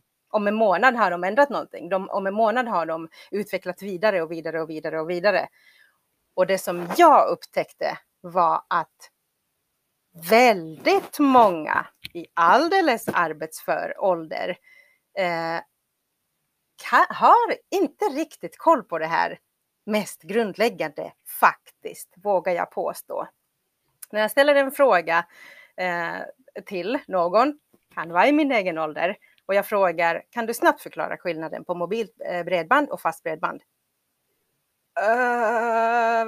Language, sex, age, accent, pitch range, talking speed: Swedish, female, 30-49, native, 175-275 Hz, 130 wpm